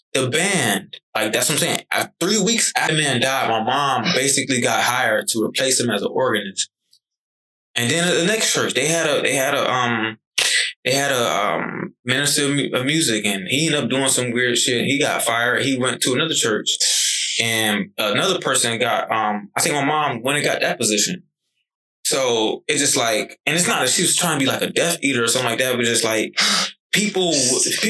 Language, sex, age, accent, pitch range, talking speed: English, male, 20-39, American, 120-165 Hz, 215 wpm